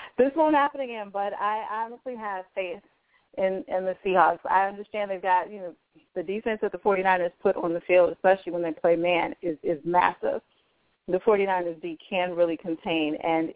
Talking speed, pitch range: 190 wpm, 185-240 Hz